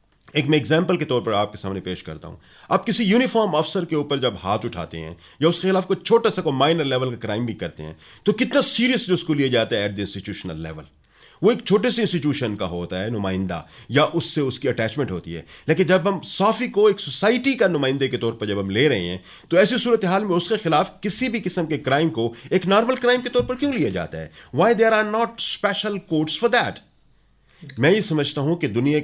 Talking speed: 235 wpm